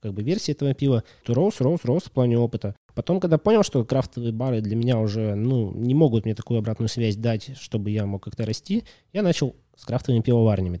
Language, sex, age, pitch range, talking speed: Russian, male, 20-39, 110-145 Hz, 215 wpm